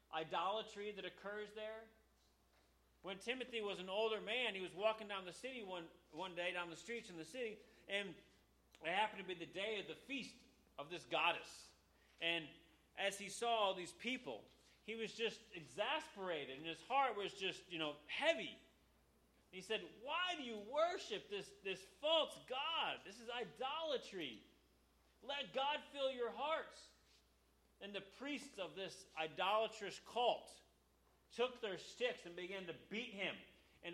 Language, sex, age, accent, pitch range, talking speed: English, male, 30-49, American, 160-225 Hz, 160 wpm